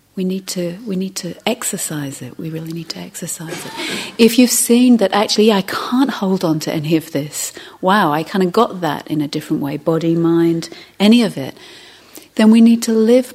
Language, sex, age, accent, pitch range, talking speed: English, female, 40-59, British, 160-210 Hz, 215 wpm